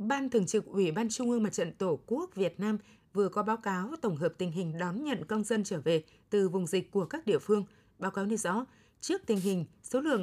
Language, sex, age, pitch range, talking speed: Vietnamese, female, 20-39, 180-225 Hz, 250 wpm